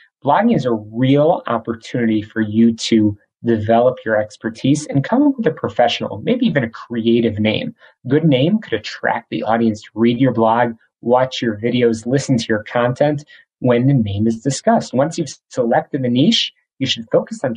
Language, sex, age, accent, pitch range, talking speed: English, male, 30-49, American, 110-140 Hz, 180 wpm